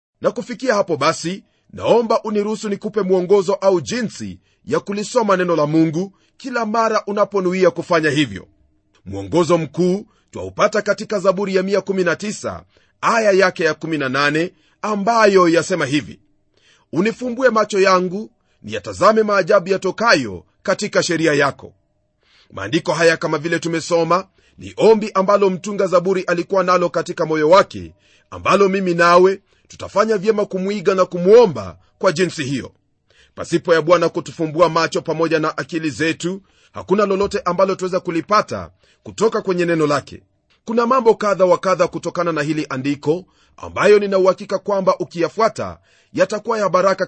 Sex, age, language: male, 40-59, Swahili